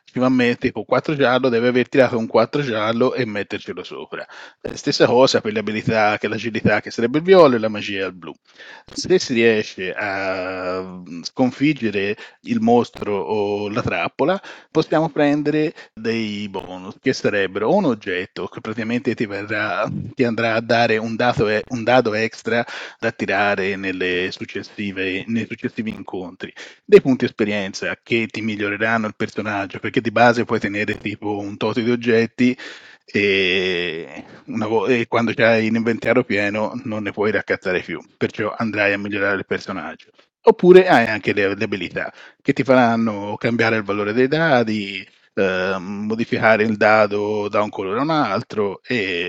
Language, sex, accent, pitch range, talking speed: Italian, male, native, 105-130 Hz, 155 wpm